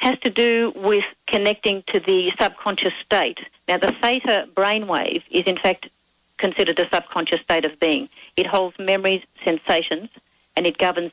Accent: Australian